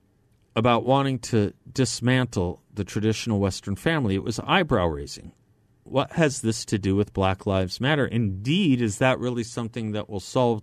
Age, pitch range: 40-59, 100-125 Hz